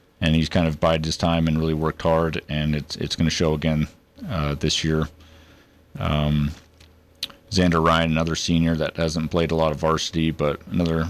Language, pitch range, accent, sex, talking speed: English, 80-90 Hz, American, male, 190 wpm